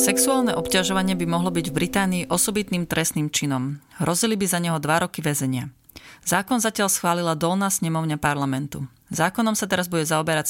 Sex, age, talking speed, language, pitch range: female, 30-49, 160 wpm, Slovak, 150-185 Hz